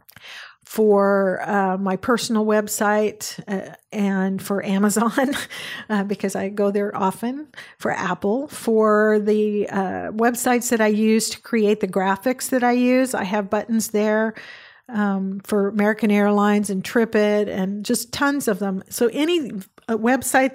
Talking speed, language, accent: 145 wpm, English, American